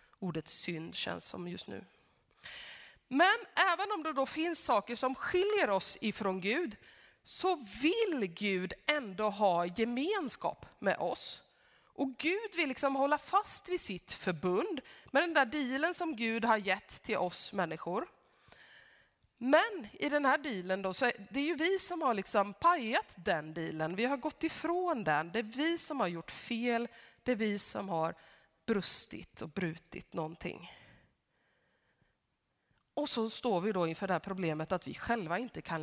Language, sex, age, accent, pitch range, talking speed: Swedish, female, 30-49, native, 185-285 Hz, 160 wpm